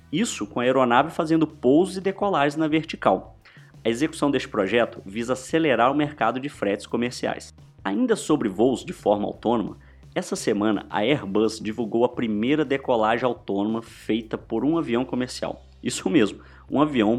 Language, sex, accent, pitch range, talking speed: Portuguese, male, Brazilian, 110-155 Hz, 155 wpm